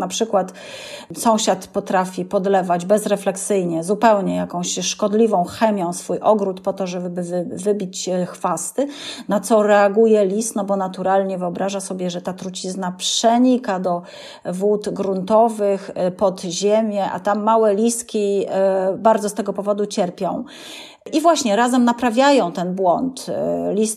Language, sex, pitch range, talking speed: Polish, female, 185-225 Hz, 130 wpm